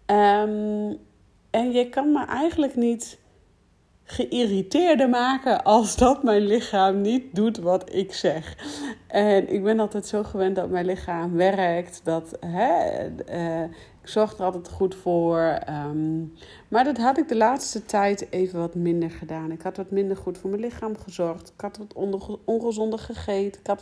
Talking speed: 160 wpm